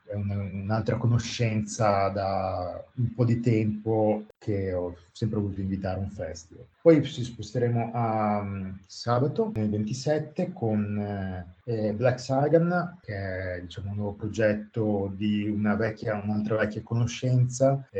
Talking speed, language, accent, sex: 135 wpm, Italian, native, male